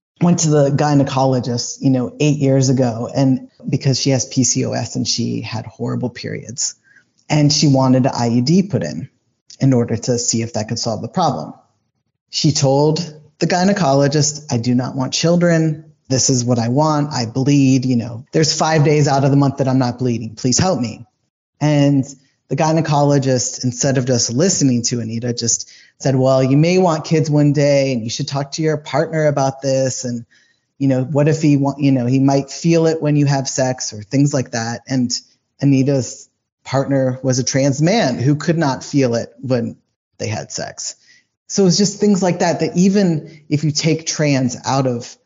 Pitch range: 125-150 Hz